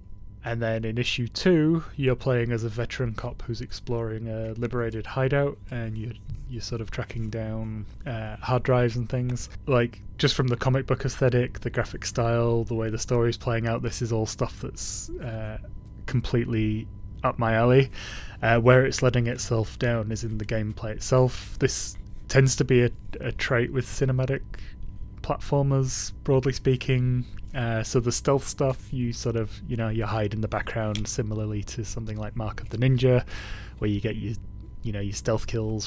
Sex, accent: male, British